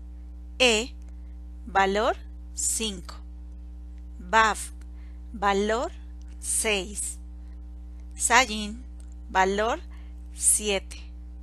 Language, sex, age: Spanish, female, 40-59